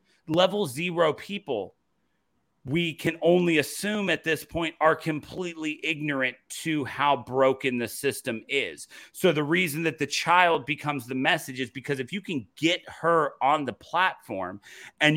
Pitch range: 150-190 Hz